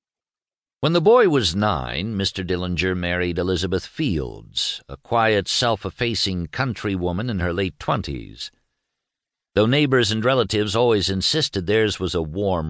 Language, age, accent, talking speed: English, 60-79, American, 130 wpm